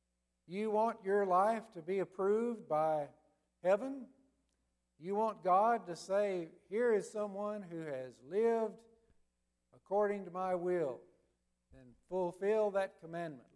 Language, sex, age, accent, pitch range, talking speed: English, male, 60-79, American, 140-185 Hz, 125 wpm